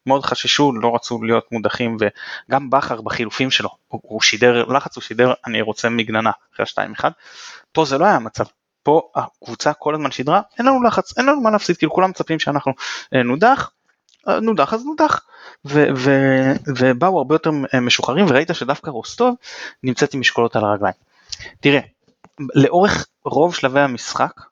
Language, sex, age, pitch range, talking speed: Hebrew, male, 20-39, 120-165 Hz, 165 wpm